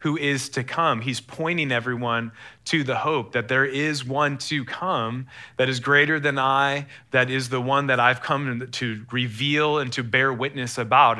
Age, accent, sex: 30-49, American, male